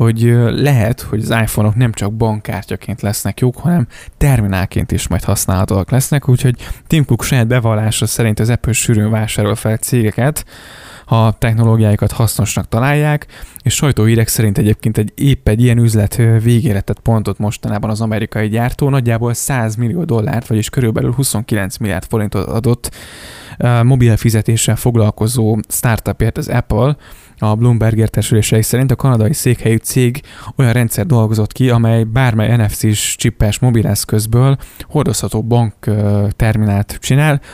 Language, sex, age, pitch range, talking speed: Hungarian, male, 20-39, 105-125 Hz, 135 wpm